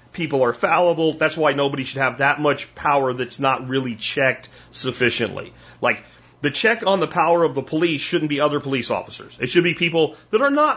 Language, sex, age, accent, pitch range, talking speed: English, male, 40-59, American, 145-205 Hz, 205 wpm